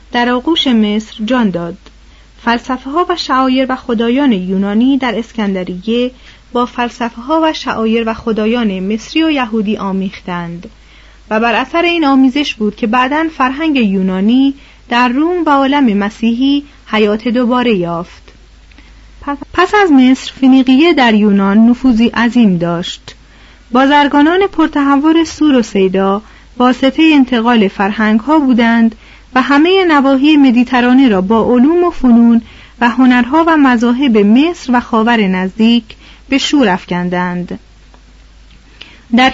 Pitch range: 215-275 Hz